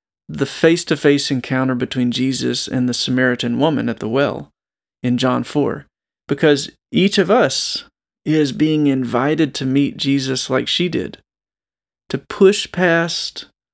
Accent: American